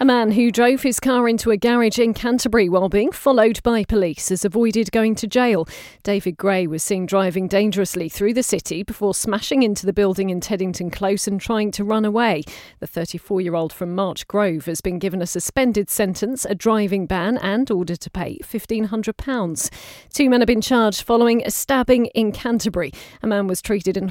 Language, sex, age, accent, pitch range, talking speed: English, female, 40-59, British, 185-235 Hz, 190 wpm